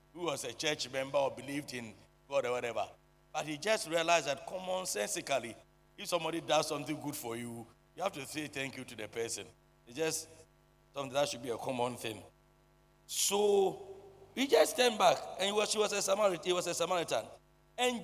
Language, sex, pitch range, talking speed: English, male, 145-200 Hz, 200 wpm